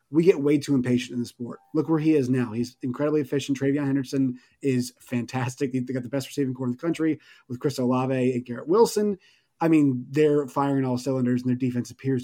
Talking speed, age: 220 wpm, 30-49